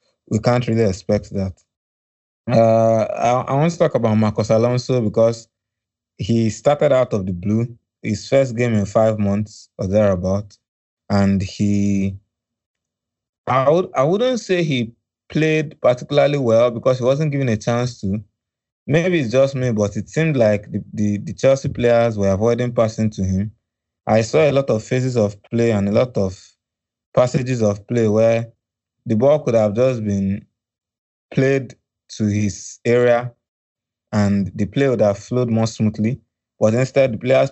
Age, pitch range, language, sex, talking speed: 20-39, 100-120 Hz, English, male, 165 wpm